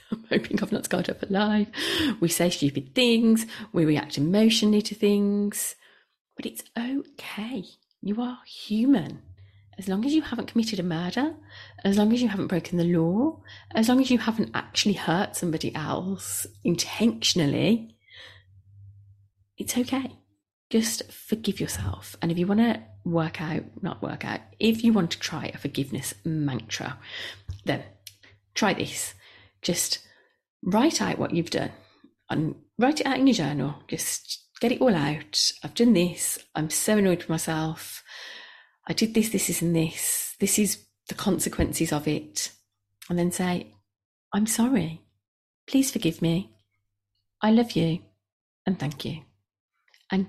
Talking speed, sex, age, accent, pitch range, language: 150 wpm, female, 30-49, British, 150-235 Hz, English